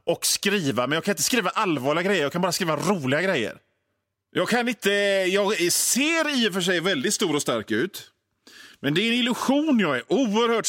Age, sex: 30-49, male